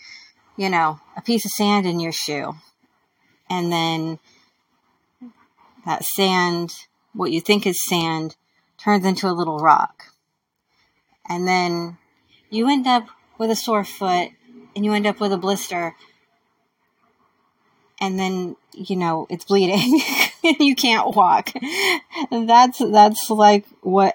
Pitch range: 170-205 Hz